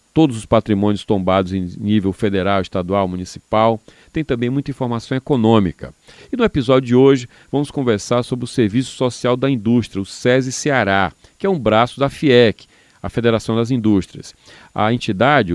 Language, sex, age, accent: Portuguese, male, 40-59, Brazilian